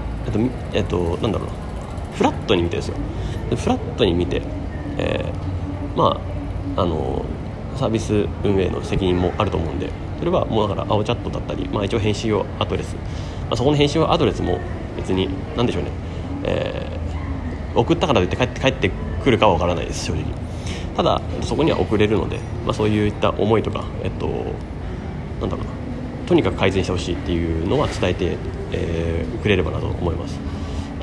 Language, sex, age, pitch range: Japanese, male, 30-49, 85-105 Hz